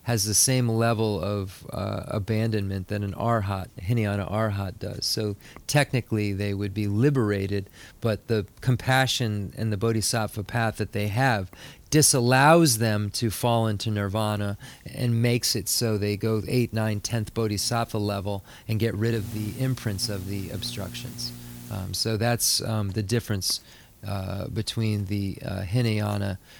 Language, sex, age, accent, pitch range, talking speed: English, male, 30-49, American, 100-115 Hz, 150 wpm